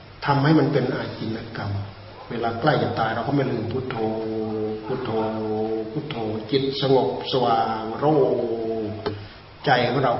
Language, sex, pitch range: Thai, male, 105-135 Hz